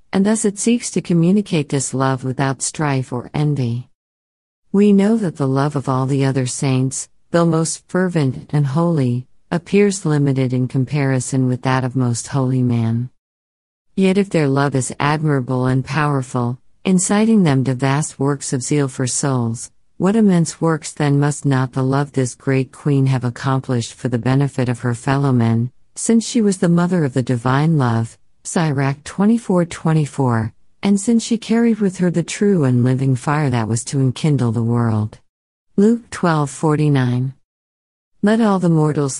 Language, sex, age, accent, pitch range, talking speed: English, female, 50-69, American, 130-160 Hz, 170 wpm